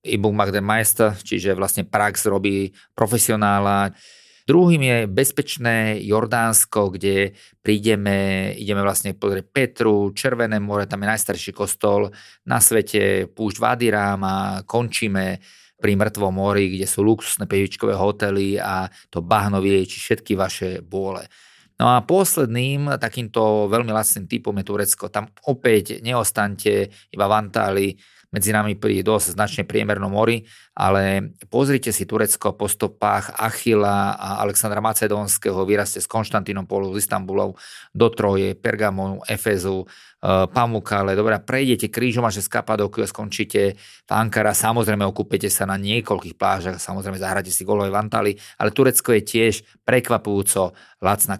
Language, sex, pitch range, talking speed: Slovak, male, 100-110 Hz, 130 wpm